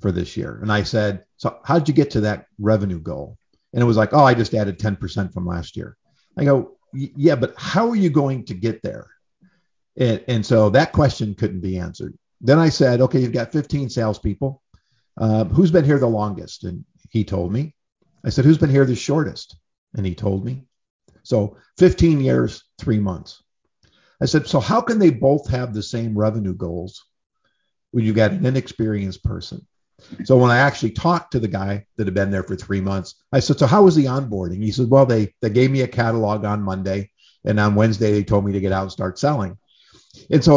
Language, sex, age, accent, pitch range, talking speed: English, male, 50-69, American, 100-140 Hz, 215 wpm